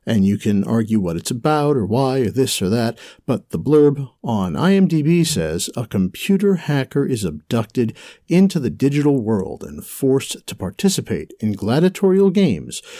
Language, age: English, 60-79